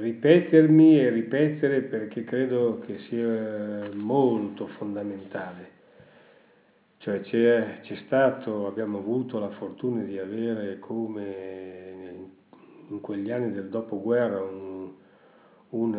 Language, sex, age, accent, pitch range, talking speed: Italian, male, 40-59, native, 105-150 Hz, 100 wpm